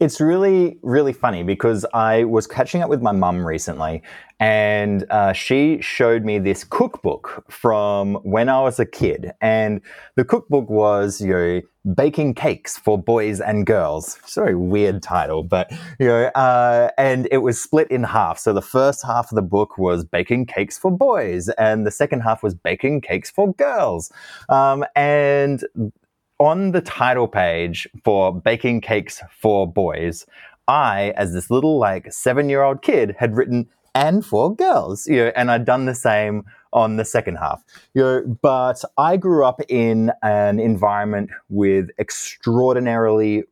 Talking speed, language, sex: 165 wpm, English, male